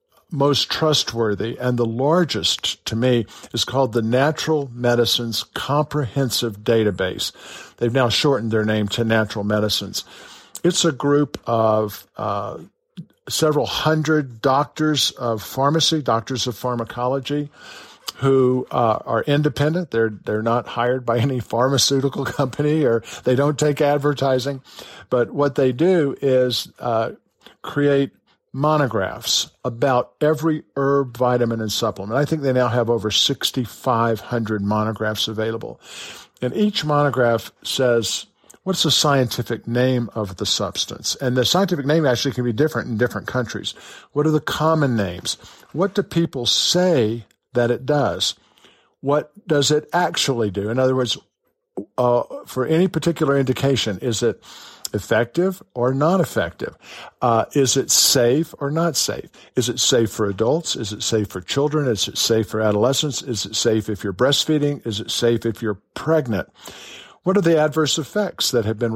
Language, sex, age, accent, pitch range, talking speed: English, male, 50-69, American, 115-145 Hz, 150 wpm